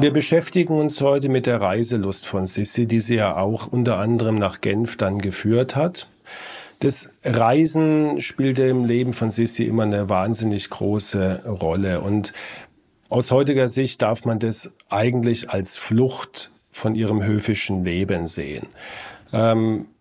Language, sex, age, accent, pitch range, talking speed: German, male, 40-59, German, 105-125 Hz, 145 wpm